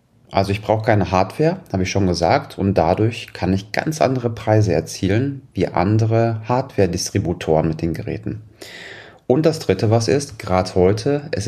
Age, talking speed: 30-49, 160 wpm